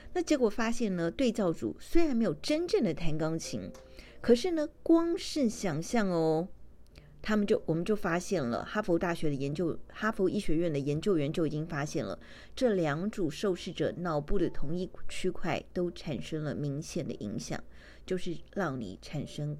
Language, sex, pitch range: Chinese, female, 155-220 Hz